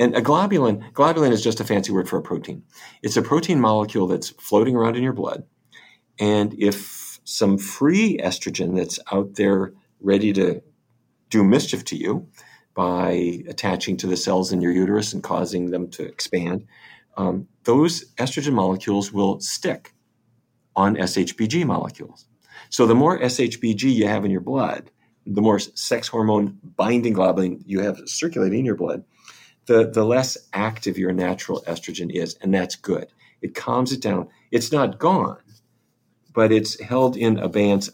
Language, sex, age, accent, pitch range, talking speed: English, male, 40-59, American, 100-120 Hz, 160 wpm